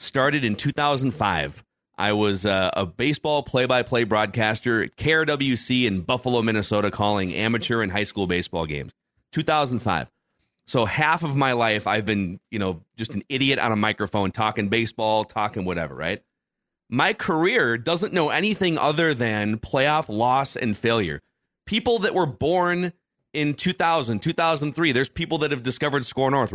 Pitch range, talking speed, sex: 110-150 Hz, 155 wpm, male